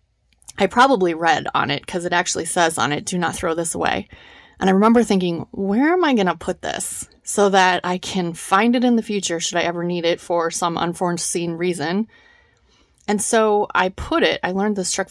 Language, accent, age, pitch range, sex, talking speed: English, American, 30-49, 175-220 Hz, female, 215 wpm